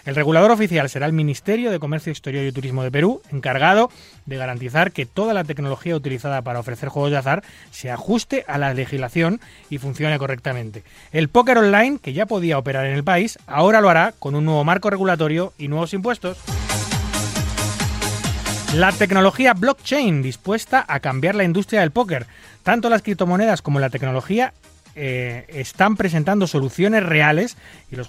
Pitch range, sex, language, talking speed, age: 135-190 Hz, male, Spanish, 165 wpm, 30-49